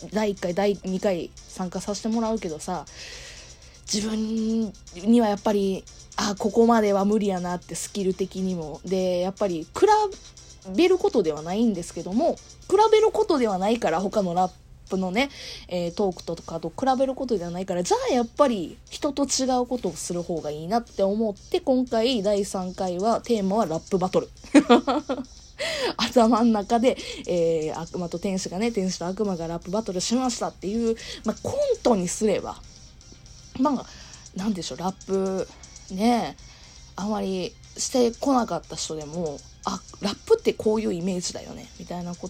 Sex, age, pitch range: female, 20-39, 180-235 Hz